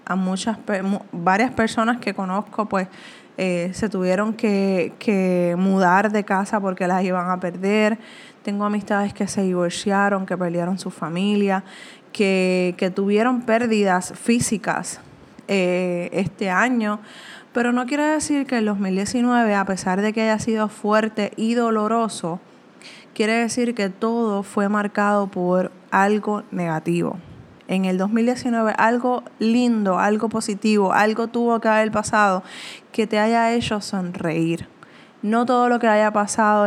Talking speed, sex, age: 140 wpm, female, 20-39